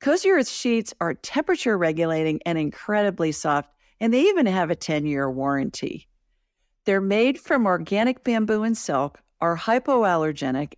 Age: 50-69